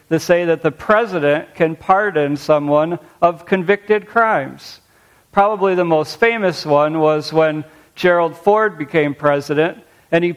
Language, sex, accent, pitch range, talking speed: English, male, American, 150-195 Hz, 140 wpm